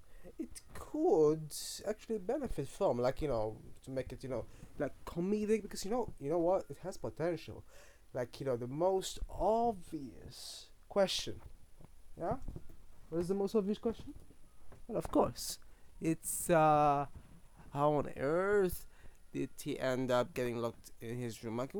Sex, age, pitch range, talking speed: male, 20-39, 120-160 Hz, 155 wpm